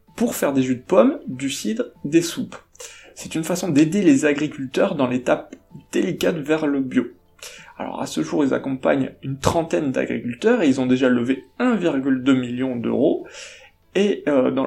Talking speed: 170 wpm